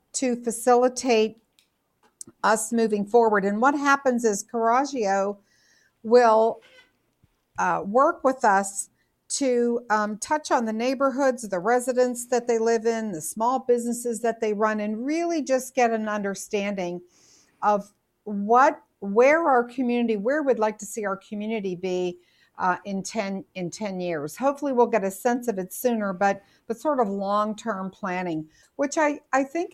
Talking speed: 155 wpm